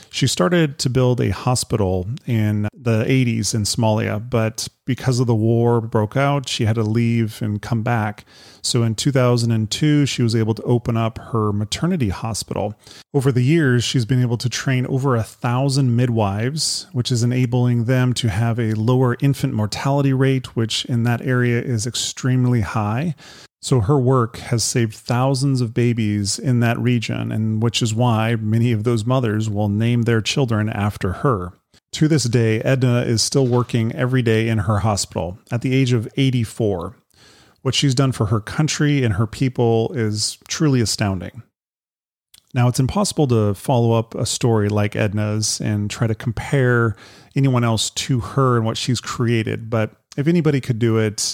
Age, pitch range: 30-49, 110-130 Hz